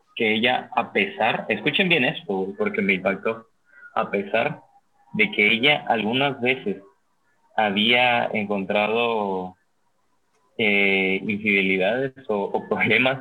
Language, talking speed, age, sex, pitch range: Spanish, 110 wpm, 30-49, male, 100-145 Hz